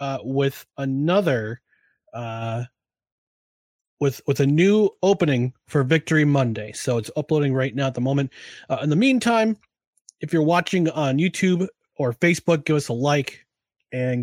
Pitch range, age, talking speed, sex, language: 125-170 Hz, 30-49, 150 wpm, male, English